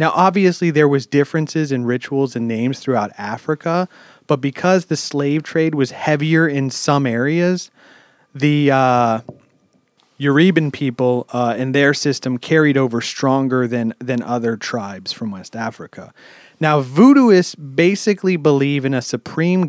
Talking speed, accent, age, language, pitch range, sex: 140 wpm, American, 30-49, English, 125-160 Hz, male